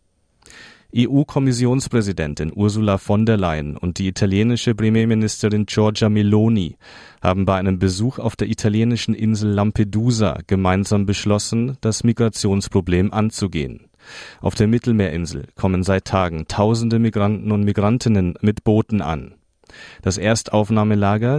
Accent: German